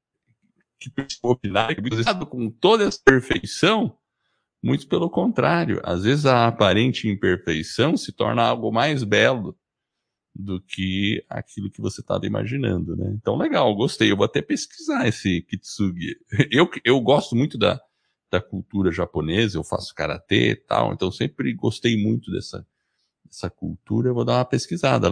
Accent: Brazilian